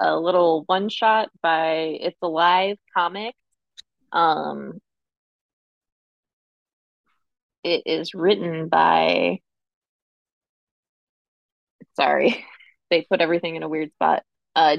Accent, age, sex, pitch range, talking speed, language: American, 20-39, female, 160-190 Hz, 90 wpm, English